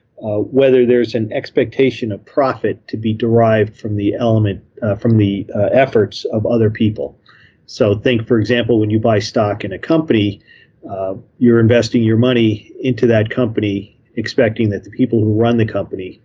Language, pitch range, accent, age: English, 105-125 Hz, American, 40-59